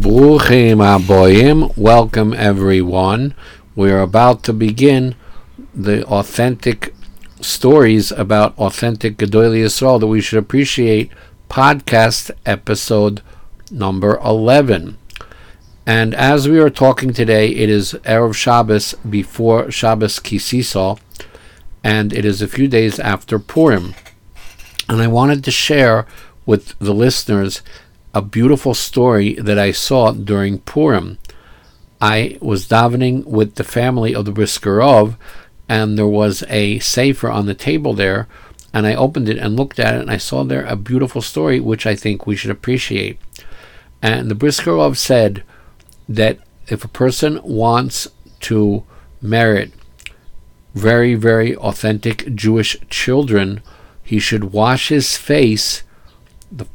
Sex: male